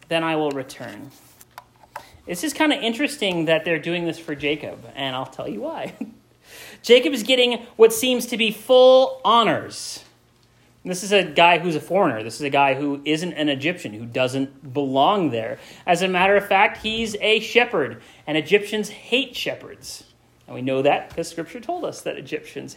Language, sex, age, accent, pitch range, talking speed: English, male, 30-49, American, 155-220 Hz, 185 wpm